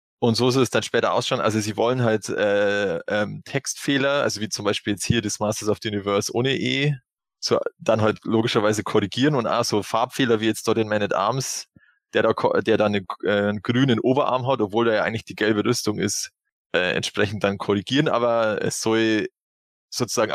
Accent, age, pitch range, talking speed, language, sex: German, 20-39, 105-130 Hz, 205 wpm, German, male